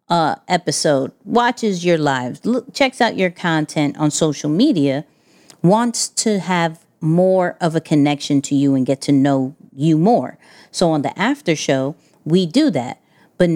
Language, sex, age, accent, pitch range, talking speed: English, female, 40-59, American, 160-200 Hz, 160 wpm